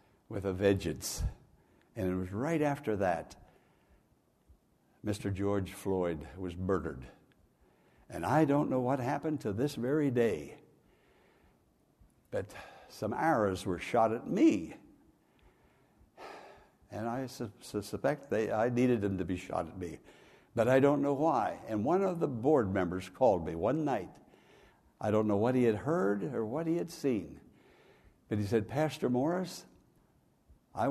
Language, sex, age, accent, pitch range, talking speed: English, male, 60-79, American, 100-135 Hz, 150 wpm